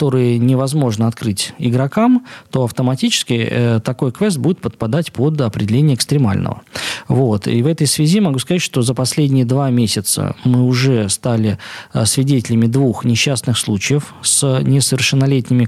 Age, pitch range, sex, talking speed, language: 20-39, 115-140 Hz, male, 135 wpm, Russian